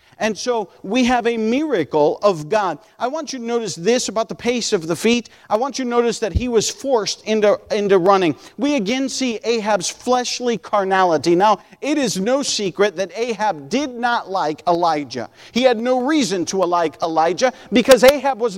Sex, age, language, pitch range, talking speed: male, 40-59, English, 195-255 Hz, 190 wpm